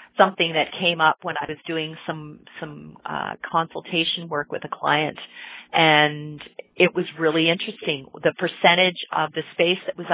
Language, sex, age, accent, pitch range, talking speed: English, female, 30-49, American, 150-190 Hz, 165 wpm